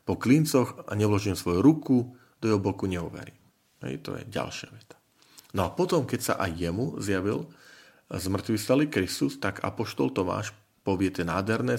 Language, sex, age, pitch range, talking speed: Slovak, male, 40-59, 90-120 Hz, 160 wpm